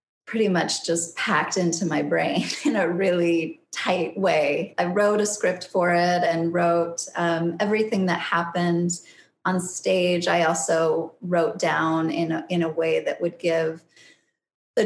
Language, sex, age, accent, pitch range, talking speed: English, female, 20-39, American, 170-195 Hz, 160 wpm